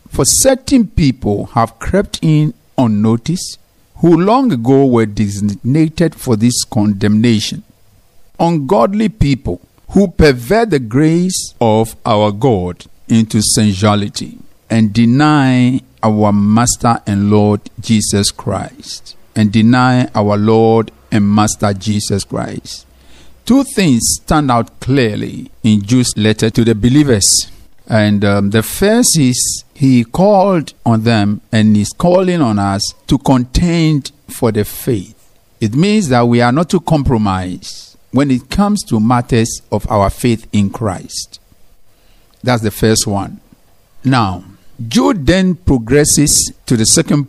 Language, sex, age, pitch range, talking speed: English, male, 50-69, 105-145 Hz, 130 wpm